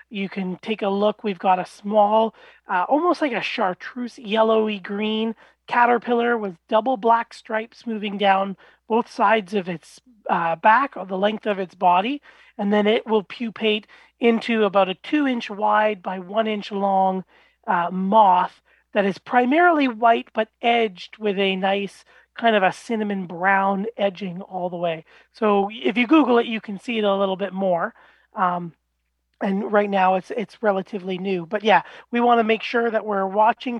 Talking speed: 180 wpm